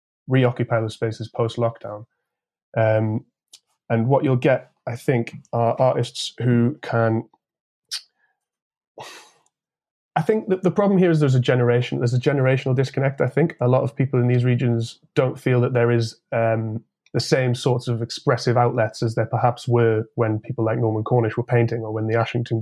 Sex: male